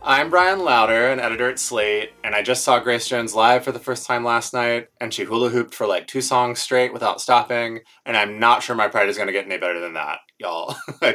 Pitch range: 115-160 Hz